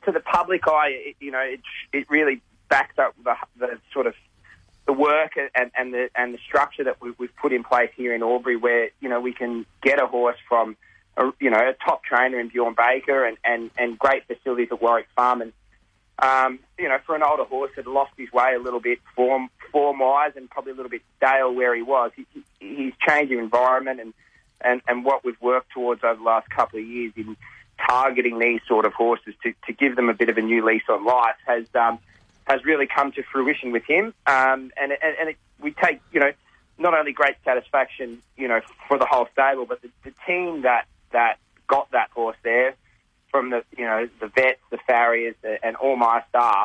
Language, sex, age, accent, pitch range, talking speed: English, male, 20-39, Australian, 115-135 Hz, 225 wpm